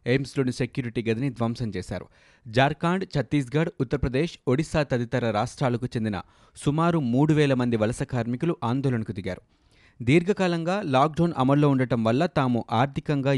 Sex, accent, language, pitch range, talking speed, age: male, native, Telugu, 115-145 Hz, 120 wpm, 30-49